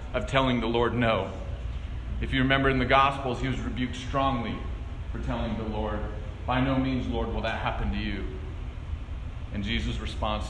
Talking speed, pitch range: 175 wpm, 95-155 Hz